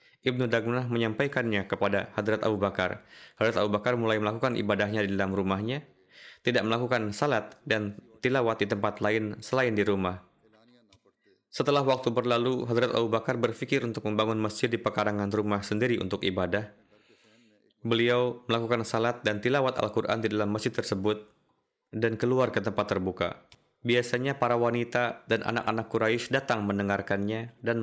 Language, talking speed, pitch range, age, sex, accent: Indonesian, 145 wpm, 105-125 Hz, 20-39, male, native